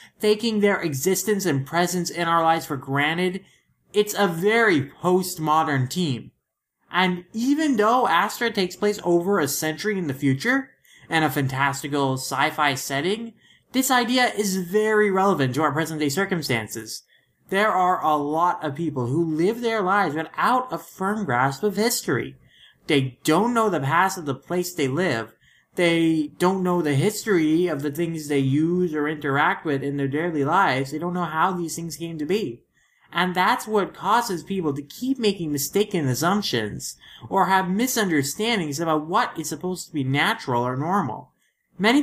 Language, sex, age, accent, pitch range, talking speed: English, male, 20-39, American, 150-205 Hz, 165 wpm